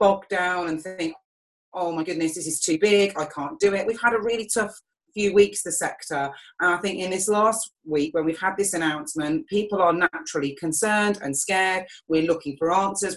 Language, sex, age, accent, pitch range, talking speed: English, female, 30-49, British, 160-205 Hz, 210 wpm